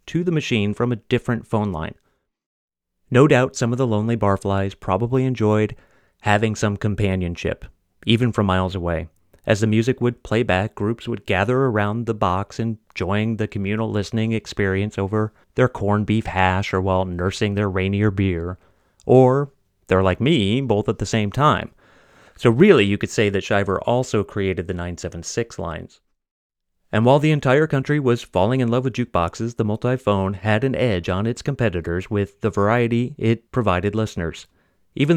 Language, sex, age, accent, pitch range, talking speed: English, male, 30-49, American, 100-120 Hz, 170 wpm